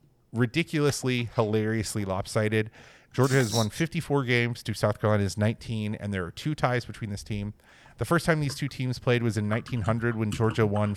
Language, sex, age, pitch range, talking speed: English, male, 30-49, 105-130 Hz, 180 wpm